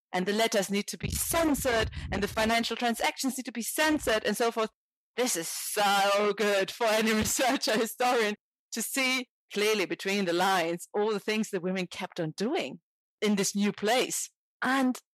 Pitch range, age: 170-220 Hz, 30-49